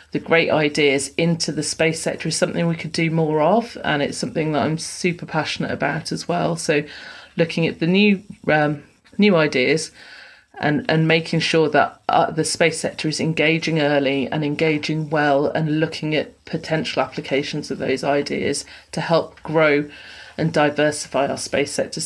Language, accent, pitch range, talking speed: English, British, 150-170 Hz, 170 wpm